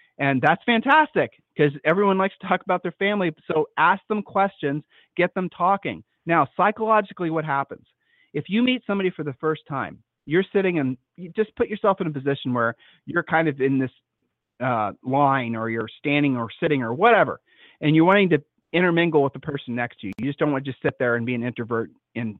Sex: male